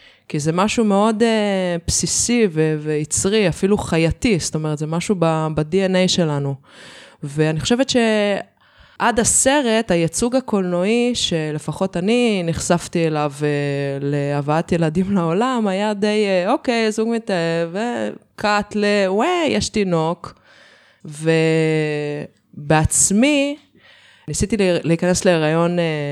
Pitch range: 155-195 Hz